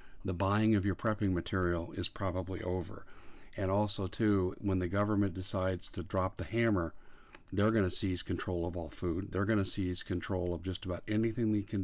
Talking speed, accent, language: 190 wpm, American, English